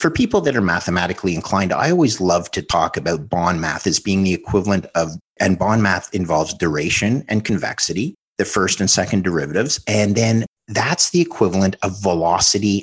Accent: American